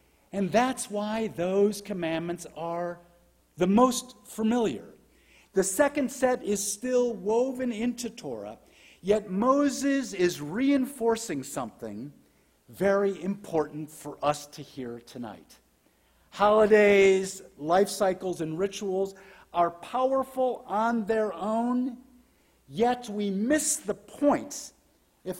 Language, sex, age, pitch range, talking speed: English, male, 50-69, 180-240 Hz, 105 wpm